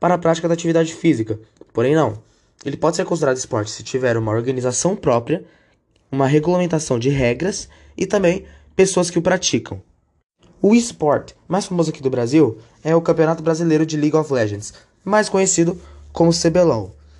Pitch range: 130-175 Hz